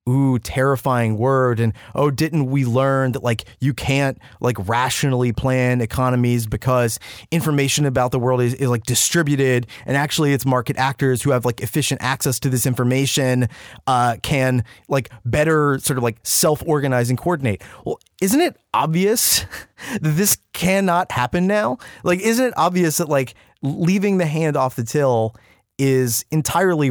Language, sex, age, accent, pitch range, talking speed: English, male, 30-49, American, 125-160 Hz, 160 wpm